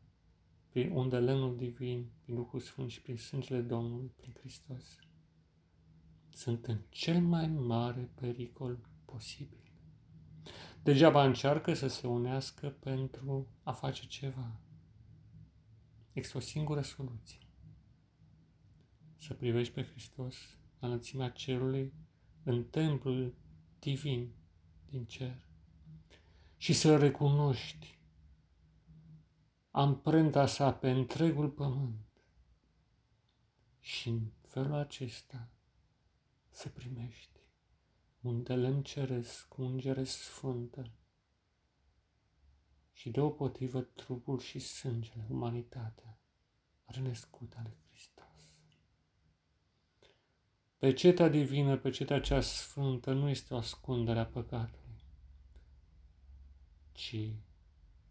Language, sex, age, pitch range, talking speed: Romanian, male, 40-59, 110-135 Hz, 90 wpm